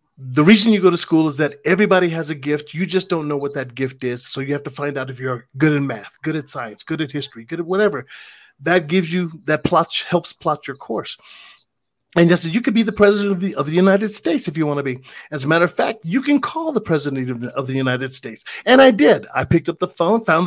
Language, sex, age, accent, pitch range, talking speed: English, male, 40-59, American, 135-180 Hz, 280 wpm